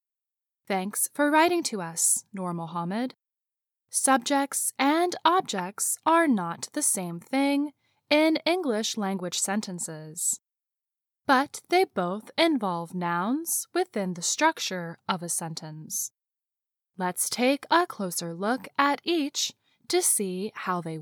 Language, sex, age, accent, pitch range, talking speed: English, female, 10-29, American, 180-305 Hz, 115 wpm